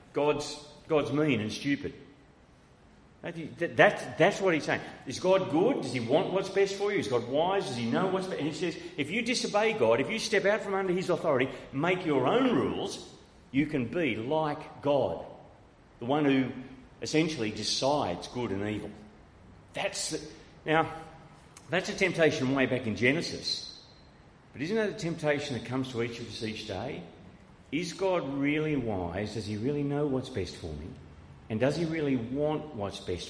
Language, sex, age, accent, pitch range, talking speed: English, male, 40-59, Australian, 115-160 Hz, 185 wpm